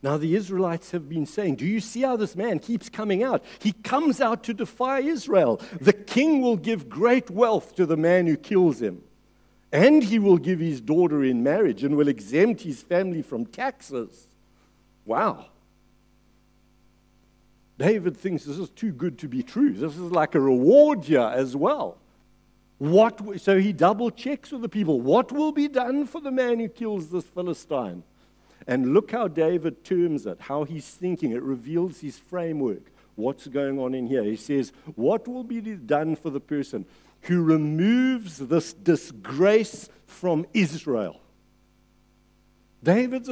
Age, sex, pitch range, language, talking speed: 60-79, male, 155-230 Hz, English, 165 wpm